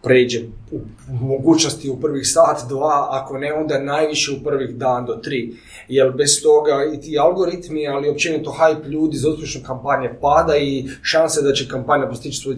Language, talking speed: Croatian, 175 wpm